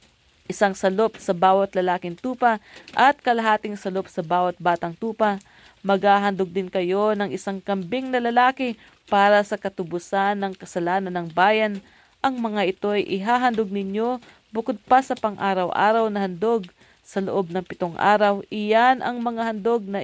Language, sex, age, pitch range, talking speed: English, female, 40-59, 185-225 Hz, 150 wpm